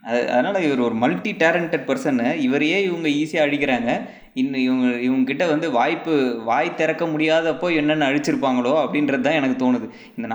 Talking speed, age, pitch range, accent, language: 155 wpm, 20-39, 120-150 Hz, native, Tamil